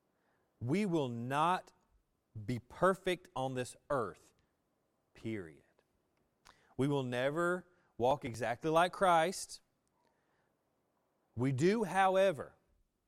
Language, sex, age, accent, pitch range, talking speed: English, male, 30-49, American, 110-155 Hz, 85 wpm